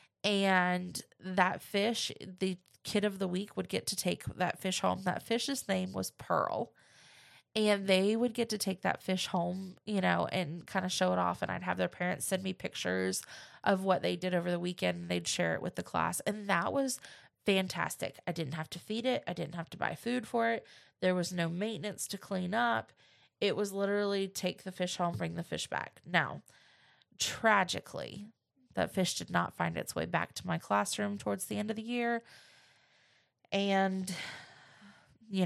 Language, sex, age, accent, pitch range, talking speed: English, female, 20-39, American, 170-210 Hz, 195 wpm